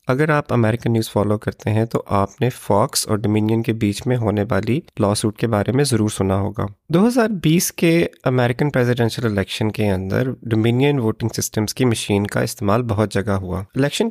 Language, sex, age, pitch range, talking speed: Urdu, male, 30-49, 110-130 Hz, 185 wpm